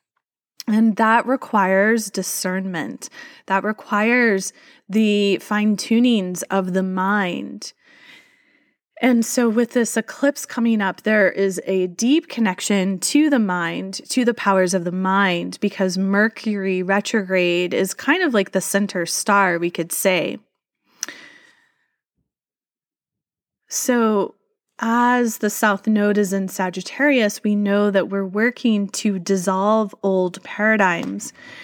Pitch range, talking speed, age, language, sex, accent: 190-230 Hz, 120 wpm, 20-39, English, female, American